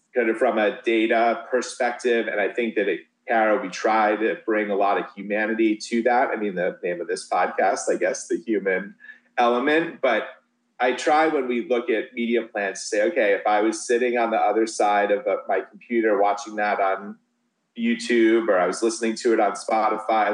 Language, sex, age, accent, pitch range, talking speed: English, male, 30-49, American, 105-145 Hz, 200 wpm